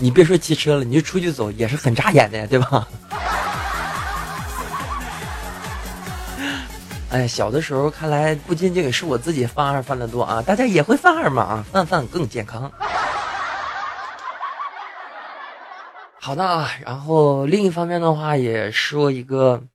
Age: 20-39